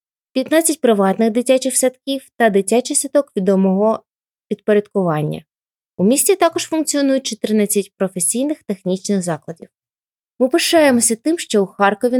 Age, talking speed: 20-39, 115 wpm